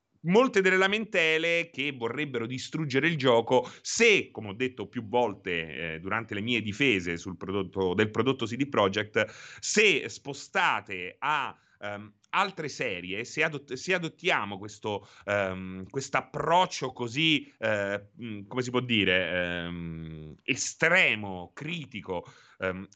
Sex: male